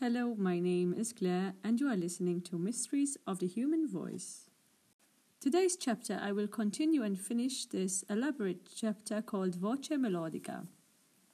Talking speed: 150 wpm